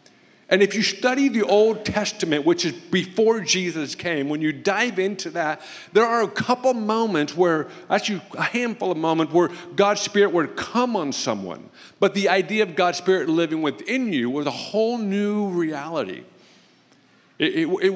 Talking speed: 170 wpm